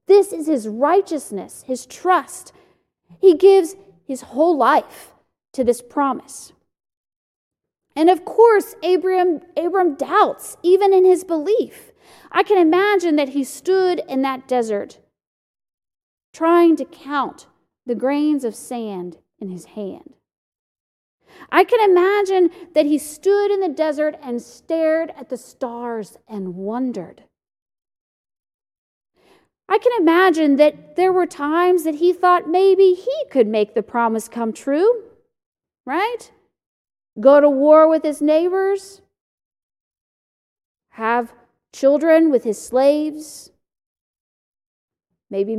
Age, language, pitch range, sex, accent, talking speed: 40-59, English, 245-365 Hz, female, American, 115 wpm